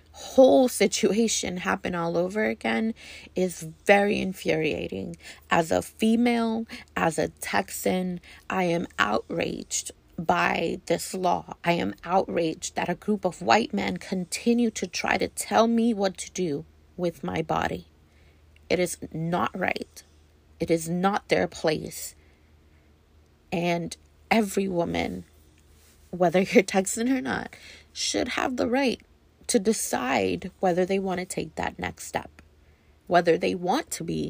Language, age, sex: English, 30-49, female